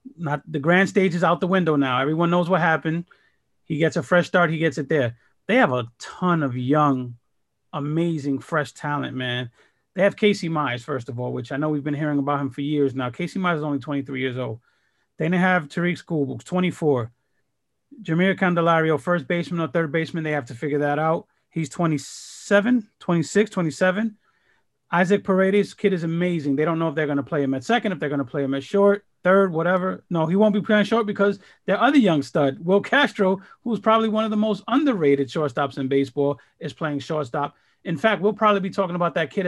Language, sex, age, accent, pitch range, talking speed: English, male, 30-49, American, 140-185 Hz, 215 wpm